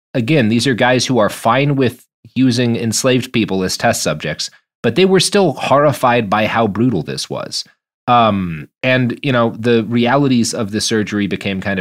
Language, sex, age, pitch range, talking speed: English, male, 30-49, 100-135 Hz, 180 wpm